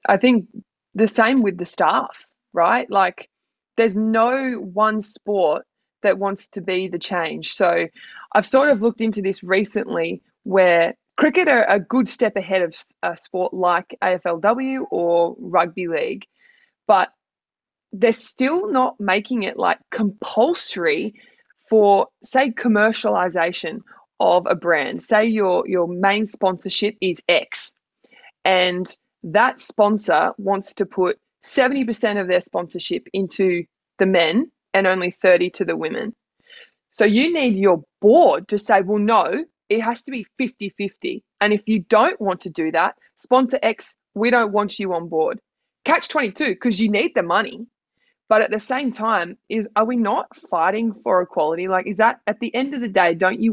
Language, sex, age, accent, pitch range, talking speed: English, female, 20-39, Australian, 185-235 Hz, 160 wpm